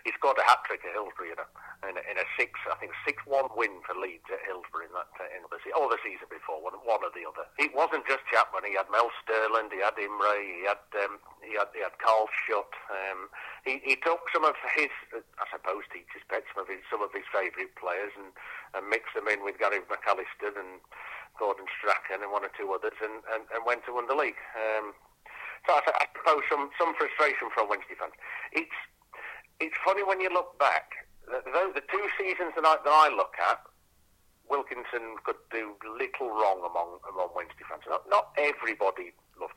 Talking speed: 215 wpm